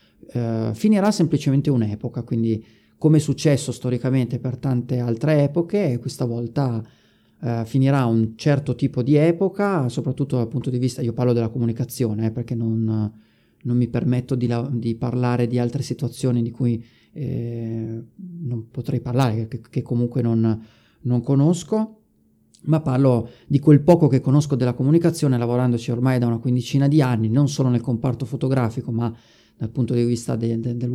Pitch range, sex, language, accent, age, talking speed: 115-135 Hz, male, Italian, native, 30-49, 155 wpm